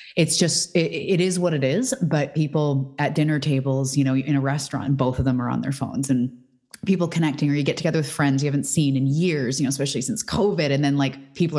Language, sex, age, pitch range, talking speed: English, female, 20-39, 135-170 Hz, 250 wpm